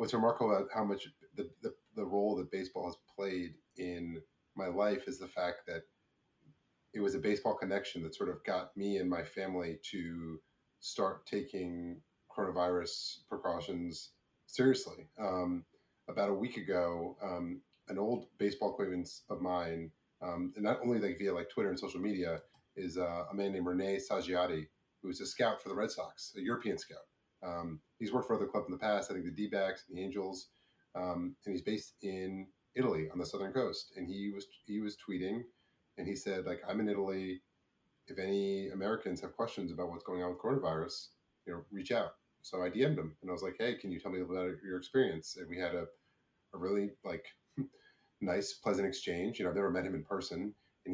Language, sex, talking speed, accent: English, male, 200 wpm, American